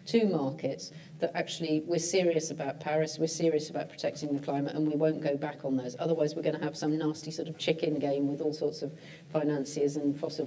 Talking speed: 220 wpm